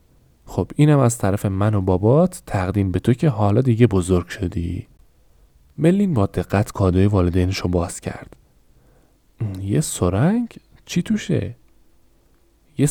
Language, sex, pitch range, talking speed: Persian, male, 95-135 Hz, 125 wpm